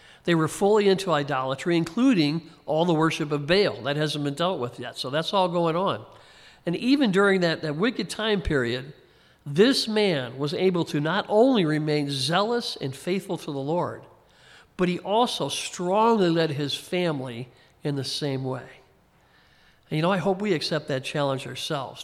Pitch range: 140-175 Hz